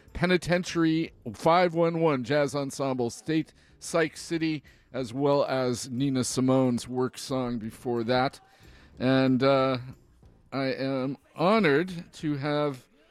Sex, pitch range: male, 125-160 Hz